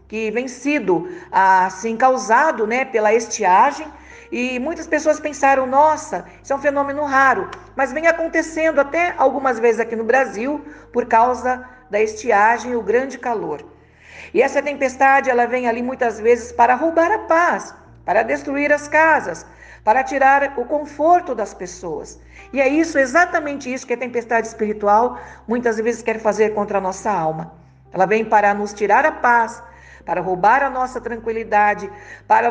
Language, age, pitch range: Portuguese, 50-69, 220-290 Hz